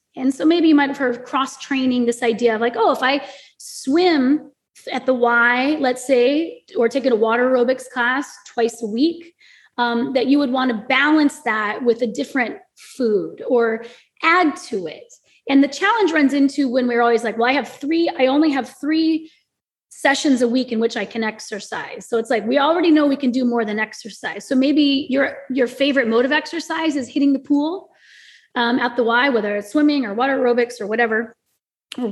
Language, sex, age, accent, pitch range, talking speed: English, female, 20-39, American, 235-290 Hz, 205 wpm